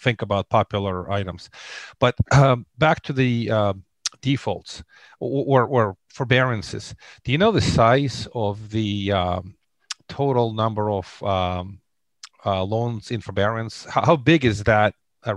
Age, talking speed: 40-59, 145 wpm